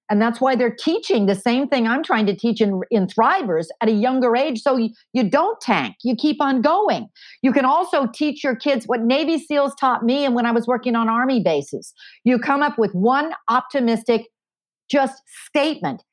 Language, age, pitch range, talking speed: English, 50-69, 225-275 Hz, 205 wpm